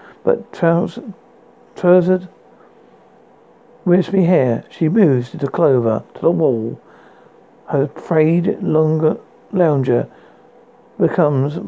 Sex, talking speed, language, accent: male, 90 wpm, English, British